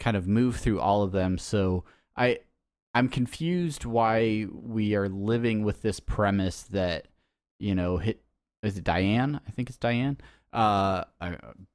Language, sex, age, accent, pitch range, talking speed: English, male, 30-49, American, 90-110 Hz, 160 wpm